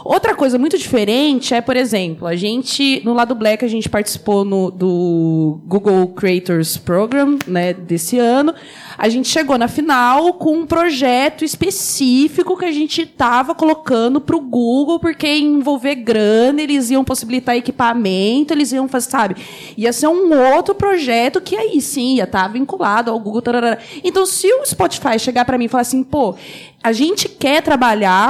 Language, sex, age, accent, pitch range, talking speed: Portuguese, female, 20-39, Brazilian, 225-285 Hz, 175 wpm